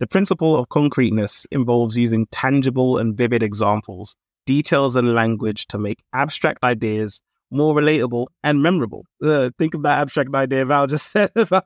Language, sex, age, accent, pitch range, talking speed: English, male, 30-49, British, 120-150 Hz, 160 wpm